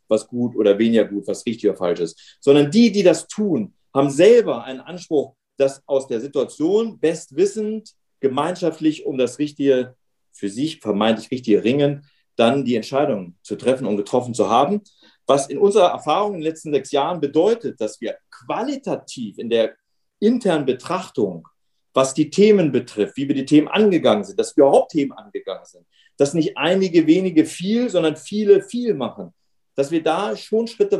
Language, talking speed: German, 170 wpm